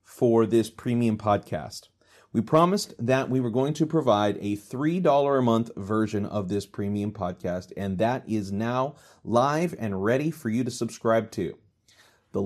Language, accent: English, American